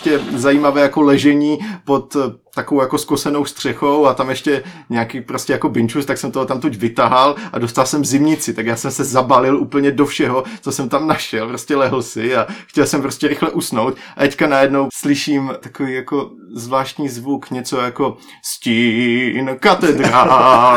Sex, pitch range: male, 135-160 Hz